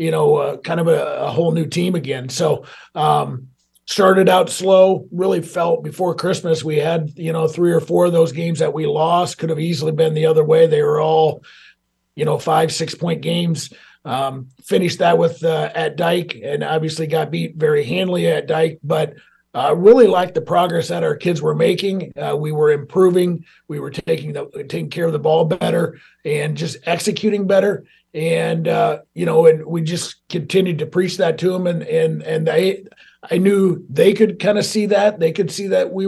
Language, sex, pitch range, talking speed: English, male, 160-185 Hz, 205 wpm